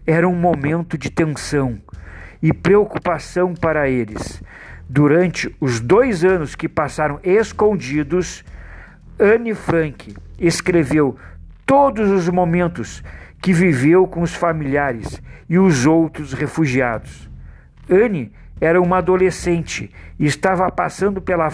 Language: Portuguese